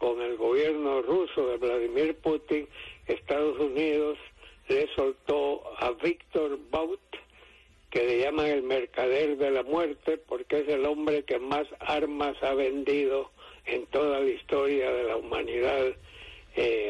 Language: English